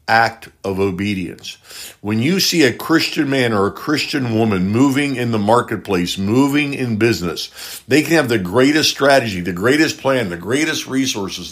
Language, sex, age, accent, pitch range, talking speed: English, male, 60-79, American, 110-140 Hz, 165 wpm